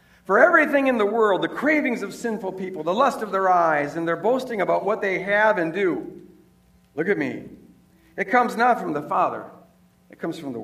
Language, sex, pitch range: English, male, 210-295 Hz